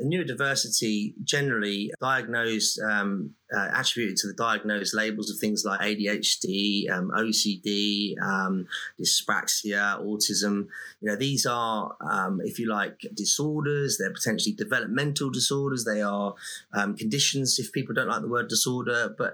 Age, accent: 30-49, British